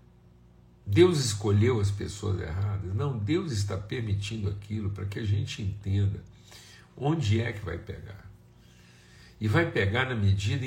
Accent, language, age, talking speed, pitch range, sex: Brazilian, Portuguese, 60-79, 140 wpm, 95-120 Hz, male